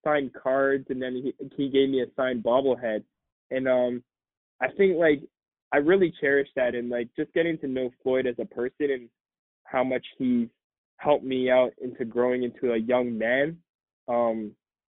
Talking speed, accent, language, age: 175 wpm, American, English, 20-39